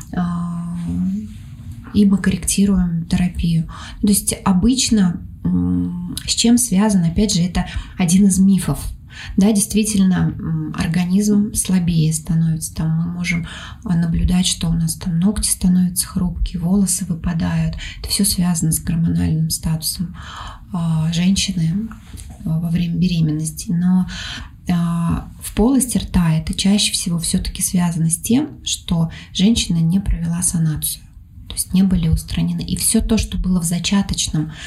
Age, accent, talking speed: 20-39, native, 125 wpm